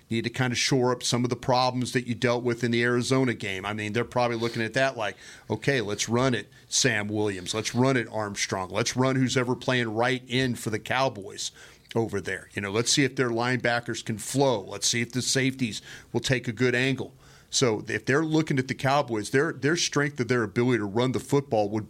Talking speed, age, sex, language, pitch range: 235 wpm, 40-59, male, English, 110-130 Hz